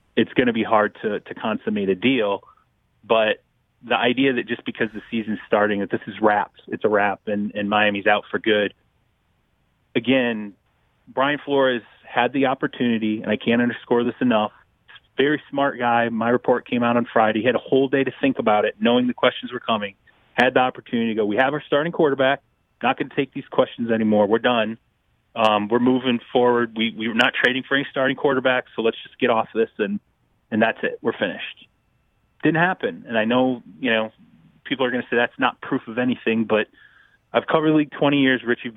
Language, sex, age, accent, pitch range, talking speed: English, male, 30-49, American, 110-130 Hz, 210 wpm